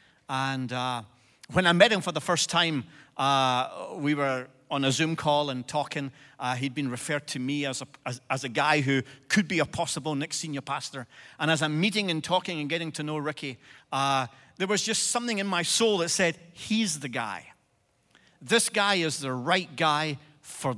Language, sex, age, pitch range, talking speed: English, male, 40-59, 145-190 Hz, 200 wpm